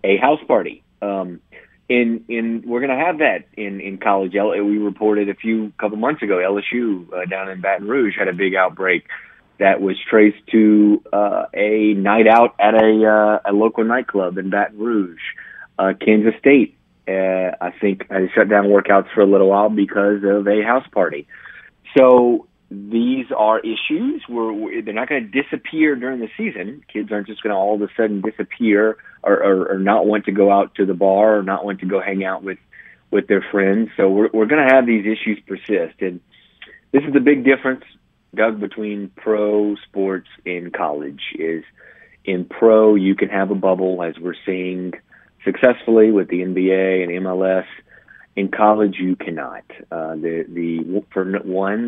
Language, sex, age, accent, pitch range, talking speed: English, male, 30-49, American, 95-110 Hz, 185 wpm